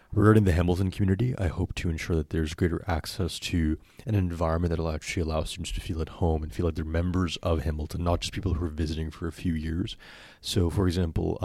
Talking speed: 225 wpm